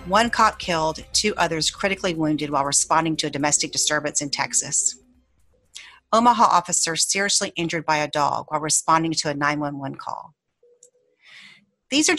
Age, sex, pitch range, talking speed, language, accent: 40-59, female, 150-180 Hz, 150 wpm, English, American